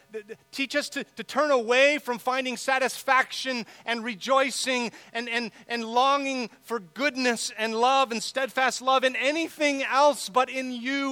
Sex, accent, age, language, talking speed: male, American, 30-49, English, 150 wpm